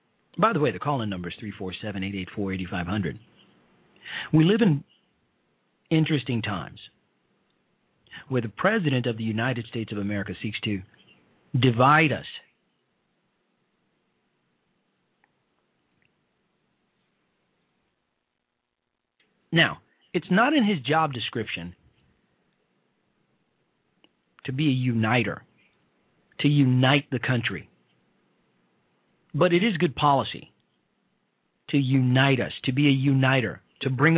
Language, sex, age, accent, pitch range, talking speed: English, male, 40-59, American, 100-155 Hz, 95 wpm